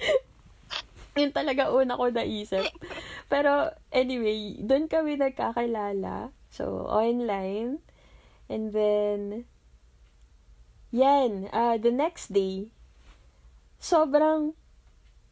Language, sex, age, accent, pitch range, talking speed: Filipino, female, 20-39, native, 205-275 Hz, 80 wpm